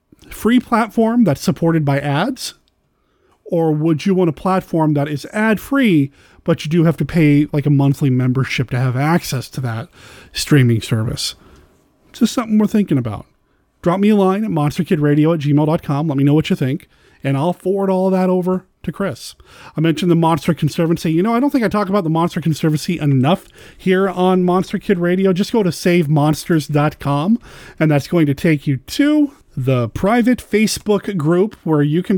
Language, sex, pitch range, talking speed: English, male, 145-190 Hz, 190 wpm